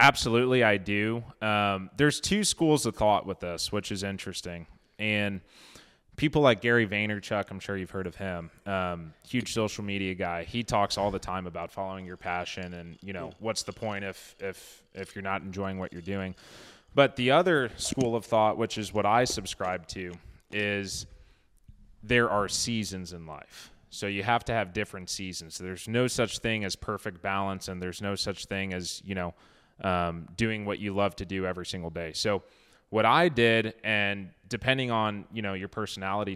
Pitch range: 90-110 Hz